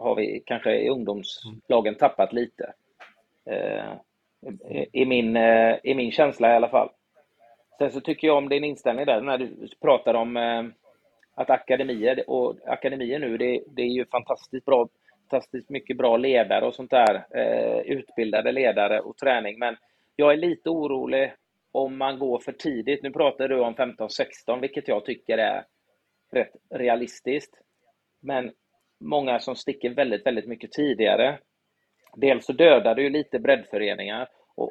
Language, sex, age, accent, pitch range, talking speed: Swedish, male, 30-49, native, 115-140 Hz, 155 wpm